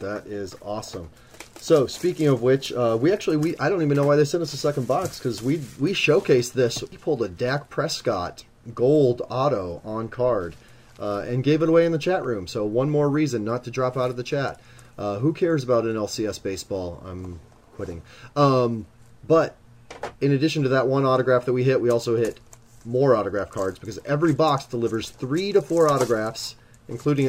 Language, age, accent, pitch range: English, 30-49, American, 115-145 Hz